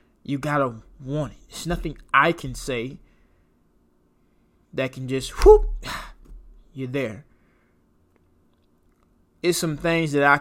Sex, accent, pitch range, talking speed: male, American, 110-155 Hz, 115 wpm